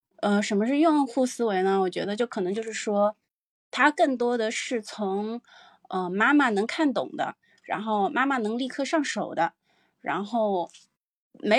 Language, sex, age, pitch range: Chinese, female, 20-39, 185-250 Hz